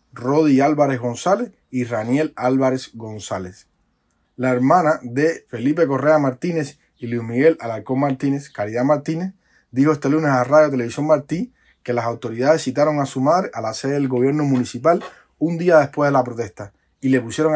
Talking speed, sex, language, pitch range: 165 wpm, male, Spanish, 120-155 Hz